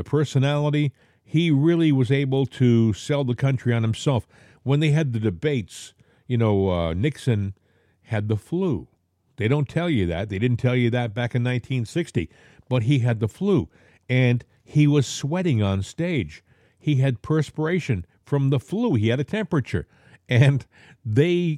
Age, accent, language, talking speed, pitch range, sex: 50-69, American, English, 165 wpm, 110-150 Hz, male